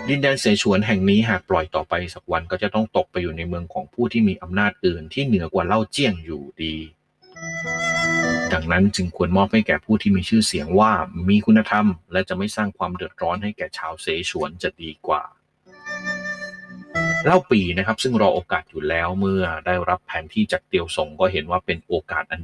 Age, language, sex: 30-49, Thai, male